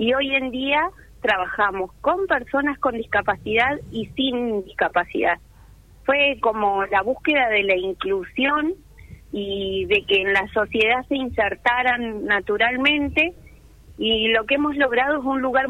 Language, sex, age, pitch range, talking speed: Italian, female, 30-49, 200-255 Hz, 140 wpm